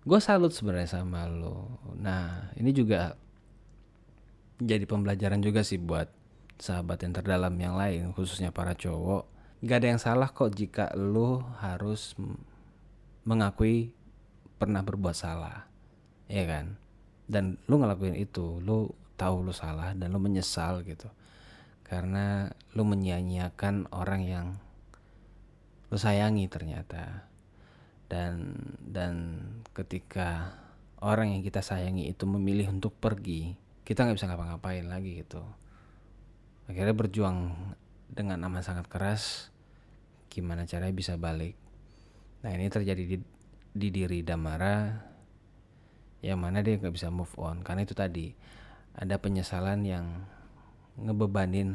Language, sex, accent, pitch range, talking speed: Indonesian, male, native, 90-105 Hz, 120 wpm